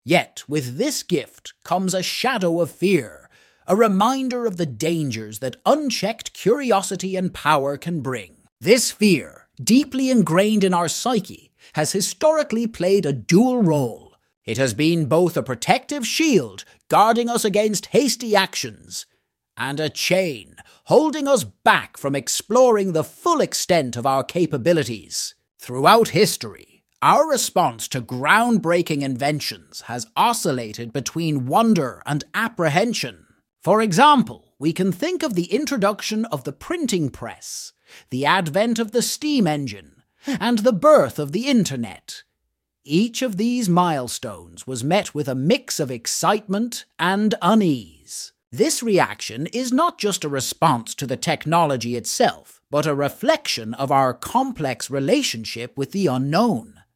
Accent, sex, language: British, male, English